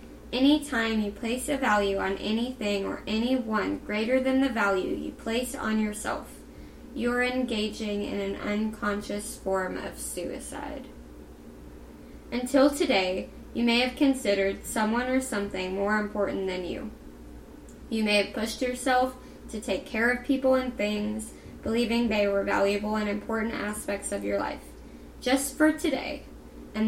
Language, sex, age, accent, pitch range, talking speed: English, female, 20-39, American, 200-255 Hz, 145 wpm